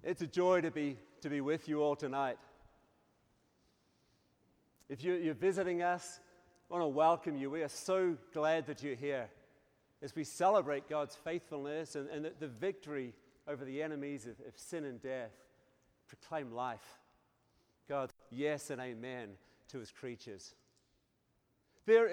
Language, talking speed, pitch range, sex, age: English, 145 wpm, 150-200 Hz, male, 40-59